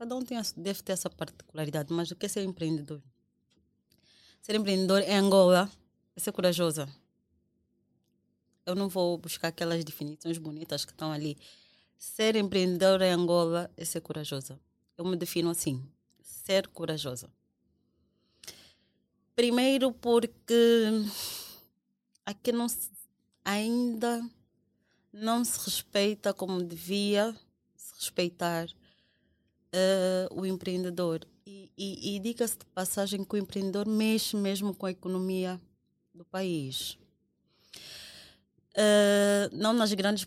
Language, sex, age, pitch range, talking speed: Portuguese, female, 20-39, 160-205 Hz, 120 wpm